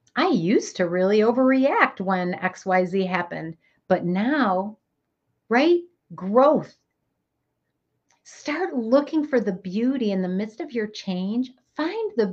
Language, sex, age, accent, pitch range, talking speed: English, female, 50-69, American, 185-265 Hz, 130 wpm